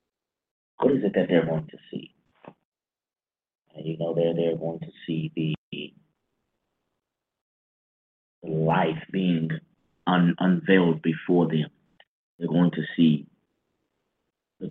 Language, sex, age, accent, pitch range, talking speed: English, male, 30-49, American, 80-90 Hz, 115 wpm